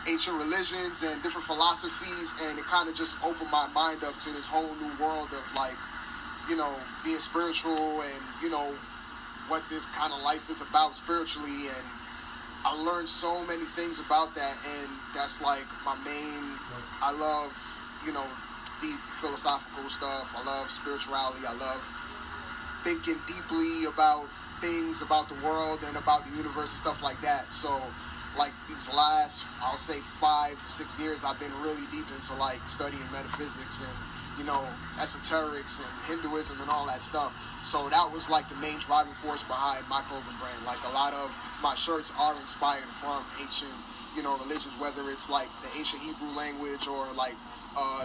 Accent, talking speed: American, 175 wpm